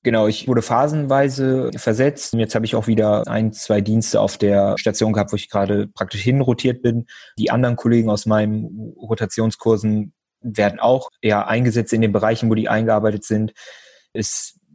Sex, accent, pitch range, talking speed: male, German, 105-120 Hz, 175 wpm